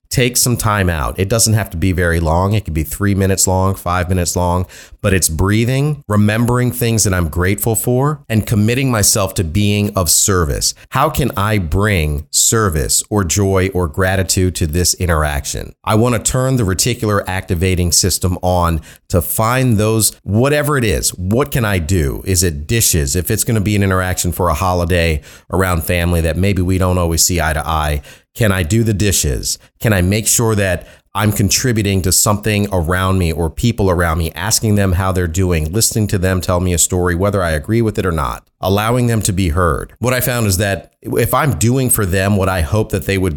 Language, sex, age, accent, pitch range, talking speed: English, male, 40-59, American, 90-110 Hz, 210 wpm